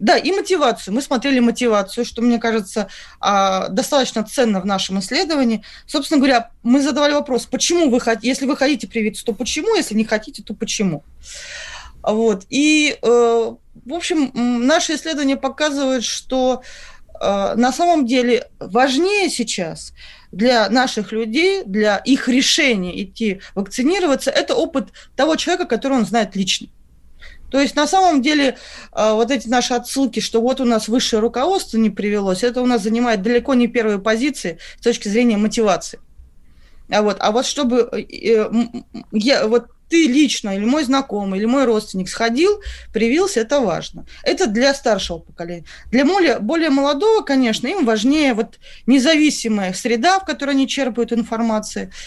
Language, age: Russian, 20-39